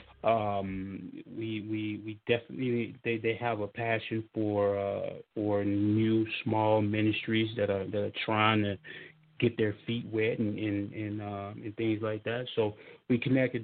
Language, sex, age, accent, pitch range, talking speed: English, male, 30-49, American, 100-115 Hz, 165 wpm